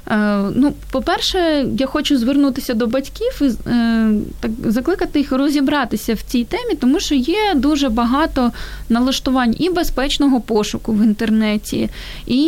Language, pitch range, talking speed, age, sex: Ukrainian, 235-300 Hz, 120 wpm, 20-39, female